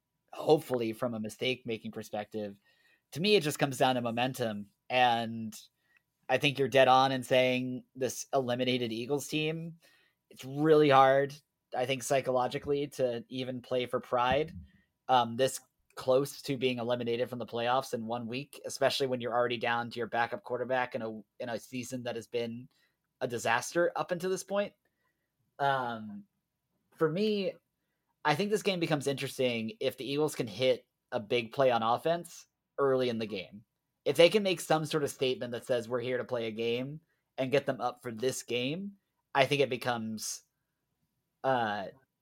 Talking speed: 175 wpm